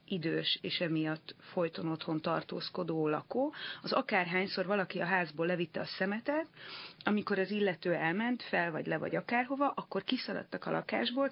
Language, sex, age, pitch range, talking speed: Hungarian, female, 30-49, 165-195 Hz, 150 wpm